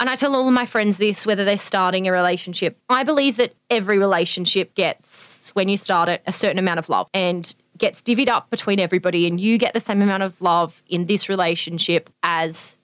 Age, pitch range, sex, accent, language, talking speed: 30-49, 175-215 Hz, female, Australian, English, 215 wpm